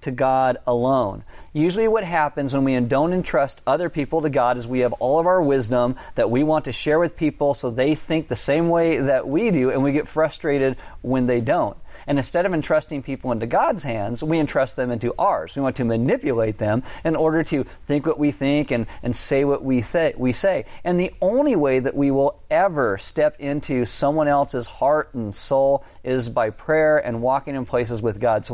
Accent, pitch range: American, 115-145 Hz